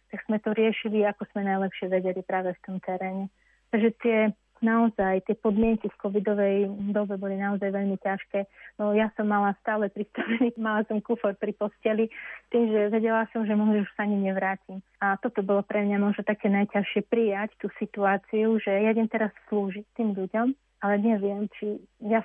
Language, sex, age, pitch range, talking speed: Slovak, female, 30-49, 200-220 Hz, 175 wpm